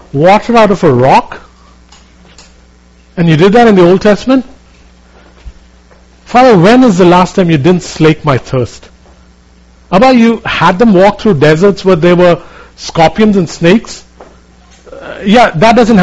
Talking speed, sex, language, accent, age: 155 wpm, male, English, Indian, 50-69